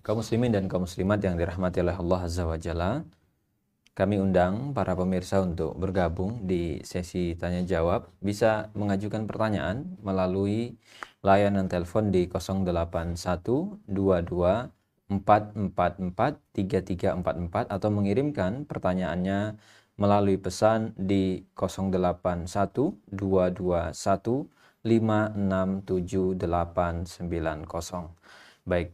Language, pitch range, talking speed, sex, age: Indonesian, 90-110 Hz, 80 wpm, male, 20-39